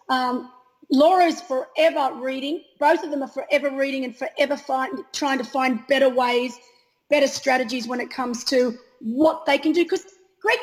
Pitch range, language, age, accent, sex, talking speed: 255-310 Hz, Danish, 30-49, Australian, female, 165 wpm